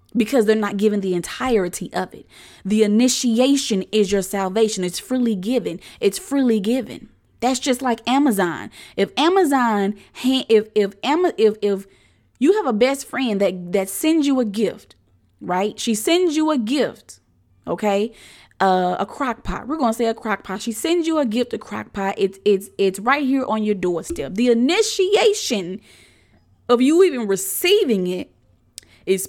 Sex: female